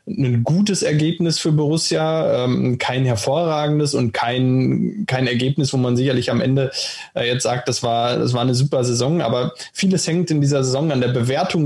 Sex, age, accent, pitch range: male, 20-39, German, 135-160 Hz